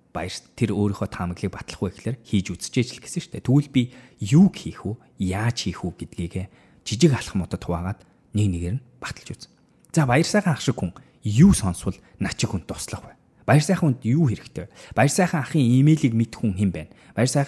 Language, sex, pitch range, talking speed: English, male, 95-130 Hz, 100 wpm